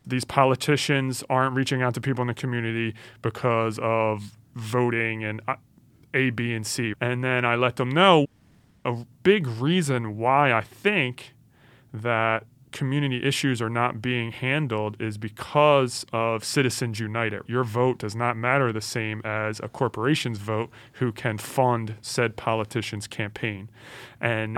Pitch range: 115-140 Hz